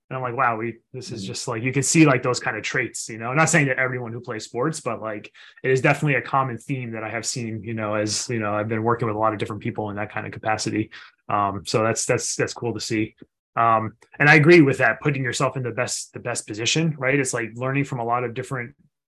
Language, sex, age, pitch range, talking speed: English, male, 20-39, 110-135 Hz, 275 wpm